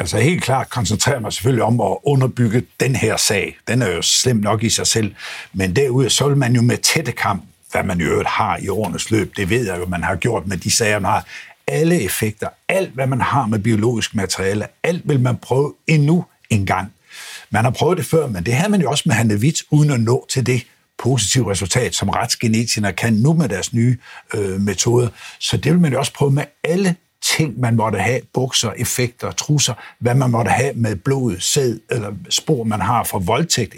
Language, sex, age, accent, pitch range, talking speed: Danish, male, 60-79, native, 105-135 Hz, 220 wpm